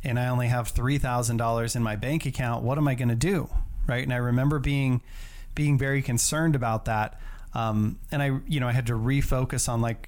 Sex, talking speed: male, 225 wpm